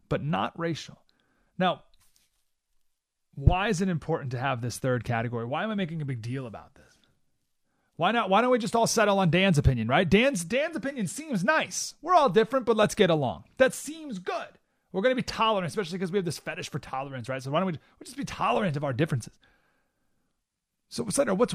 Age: 30-49